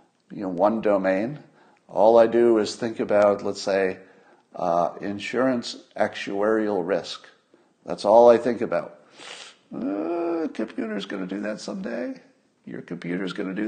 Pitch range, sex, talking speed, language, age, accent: 100-125 Hz, male, 145 wpm, English, 50-69, American